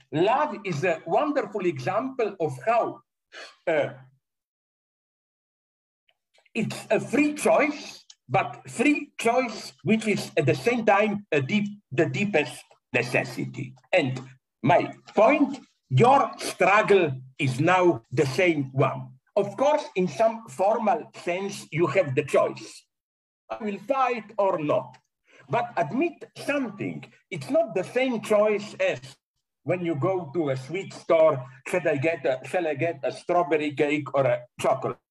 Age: 60-79